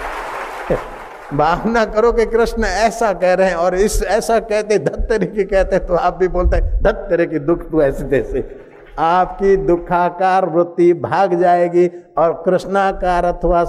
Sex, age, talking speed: male, 50-69, 150 wpm